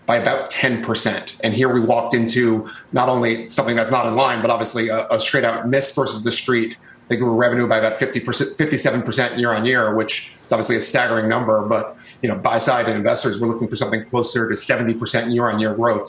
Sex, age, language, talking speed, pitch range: male, 30-49, English, 220 wpm, 110-125 Hz